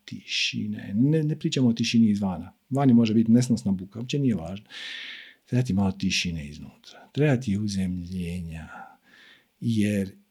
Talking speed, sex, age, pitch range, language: 130 wpm, male, 50-69, 120-195 Hz, Croatian